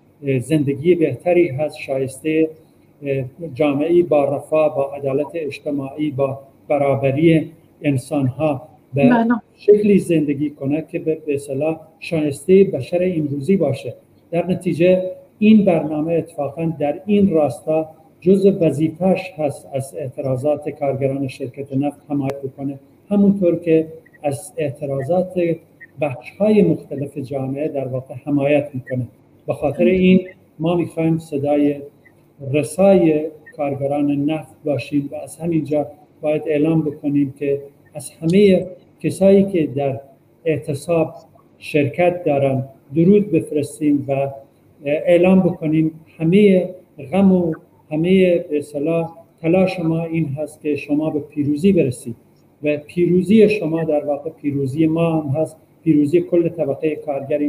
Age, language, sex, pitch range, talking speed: 50-69, Persian, male, 145-165 Hz, 115 wpm